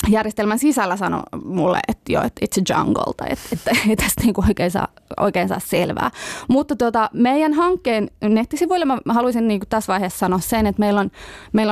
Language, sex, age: Finnish, female, 20-39